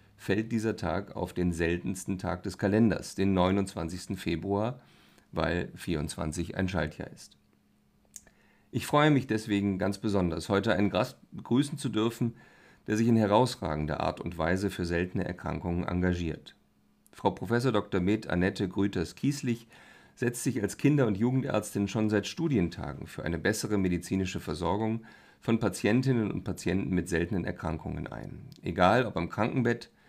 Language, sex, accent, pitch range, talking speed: German, male, German, 90-110 Hz, 145 wpm